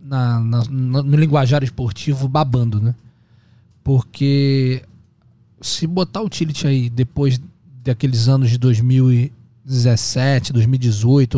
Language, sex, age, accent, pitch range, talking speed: Portuguese, male, 20-39, Brazilian, 120-155 Hz, 105 wpm